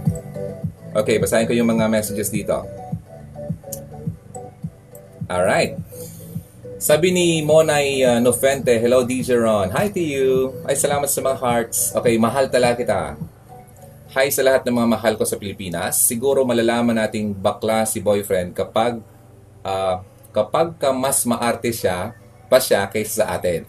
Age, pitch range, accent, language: 20-39, 100-125 Hz, native, Filipino